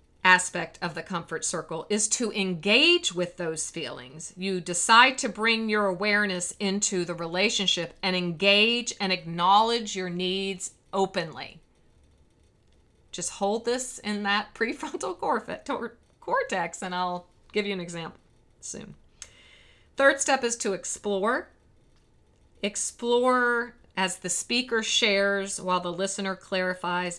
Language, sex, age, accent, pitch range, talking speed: English, female, 40-59, American, 175-210 Hz, 120 wpm